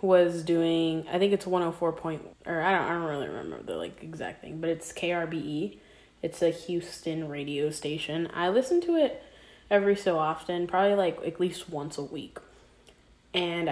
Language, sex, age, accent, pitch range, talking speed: English, female, 10-29, American, 160-200 Hz, 180 wpm